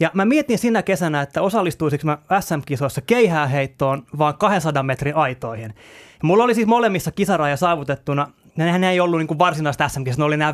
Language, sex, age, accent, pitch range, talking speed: Finnish, male, 20-39, native, 145-210 Hz, 175 wpm